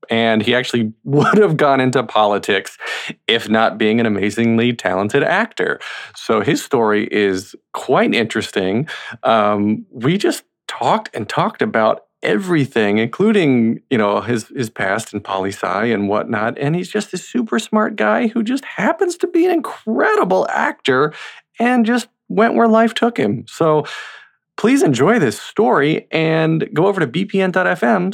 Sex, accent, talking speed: male, American, 150 wpm